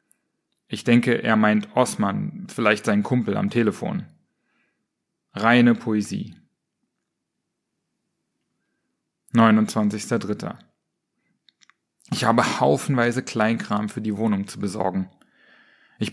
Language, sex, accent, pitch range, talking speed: German, male, German, 110-140 Hz, 85 wpm